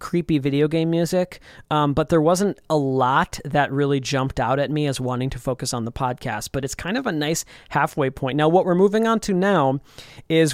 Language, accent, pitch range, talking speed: English, American, 135-175 Hz, 220 wpm